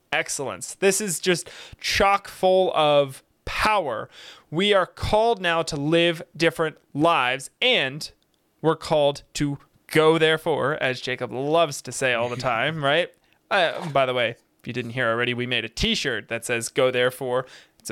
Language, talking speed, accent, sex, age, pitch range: English, 165 wpm, American, male, 20-39, 130-170 Hz